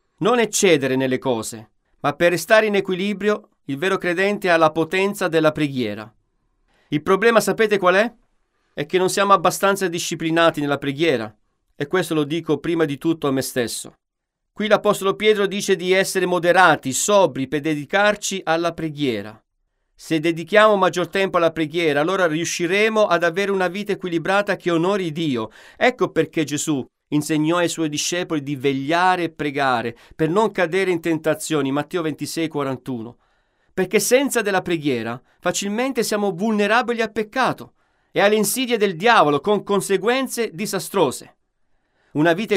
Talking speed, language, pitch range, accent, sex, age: 150 wpm, Italian, 145-195 Hz, native, male, 40-59